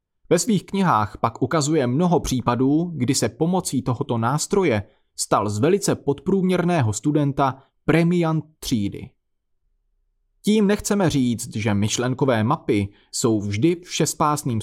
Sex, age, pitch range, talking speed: male, 30-49, 110-160 Hz, 115 wpm